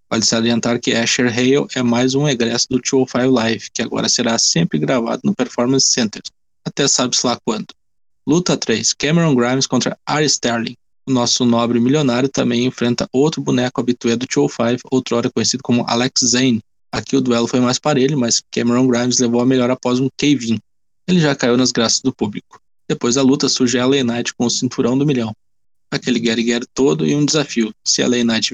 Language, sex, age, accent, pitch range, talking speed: Portuguese, male, 20-39, Brazilian, 115-130 Hz, 190 wpm